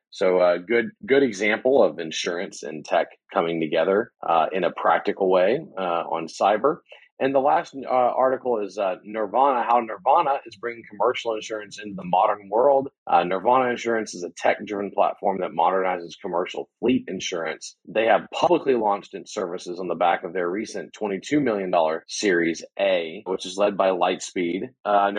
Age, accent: 40-59, American